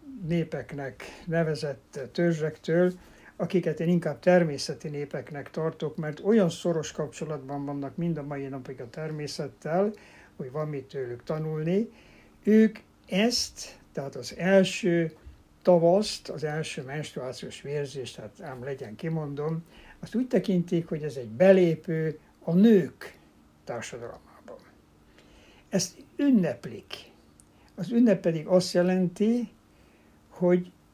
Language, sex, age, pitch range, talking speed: Hungarian, male, 60-79, 145-180 Hz, 110 wpm